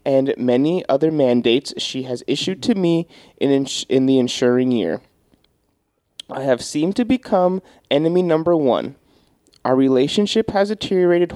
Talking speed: 145 wpm